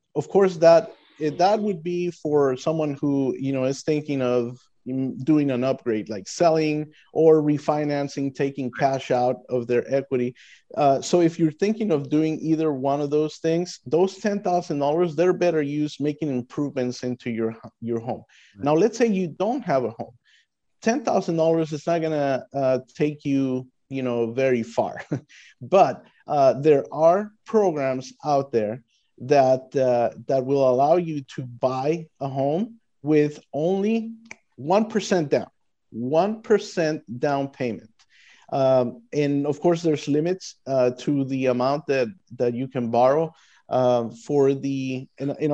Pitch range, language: 130-160 Hz, English